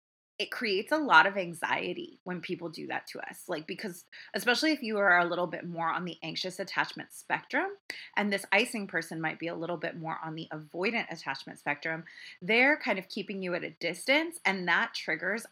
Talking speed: 205 wpm